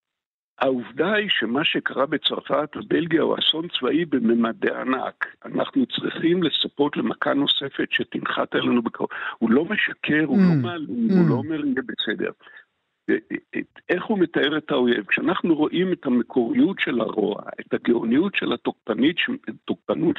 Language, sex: Hebrew, male